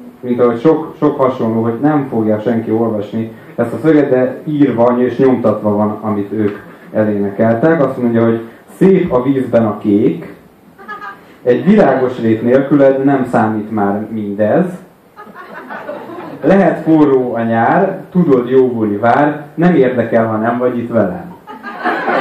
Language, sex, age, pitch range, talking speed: Hungarian, male, 30-49, 115-150 Hz, 140 wpm